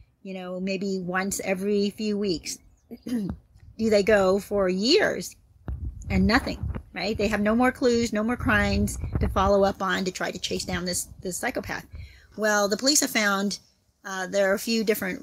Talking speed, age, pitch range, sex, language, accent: 180 wpm, 40-59, 180-215 Hz, female, English, American